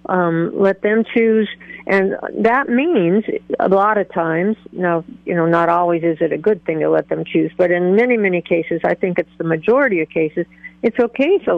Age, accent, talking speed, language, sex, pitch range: 50-69, American, 205 wpm, English, female, 170-200 Hz